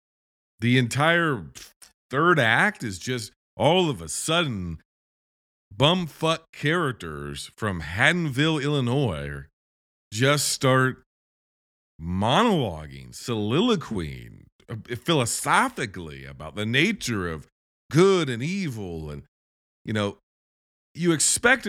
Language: English